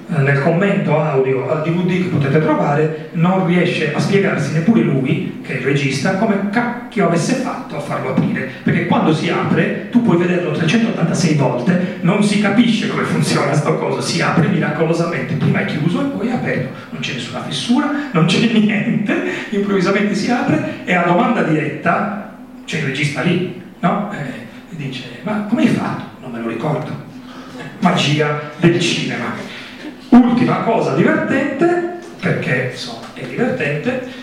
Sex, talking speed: male, 160 wpm